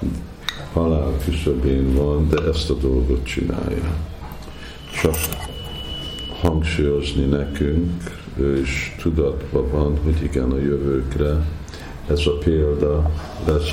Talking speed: 95 wpm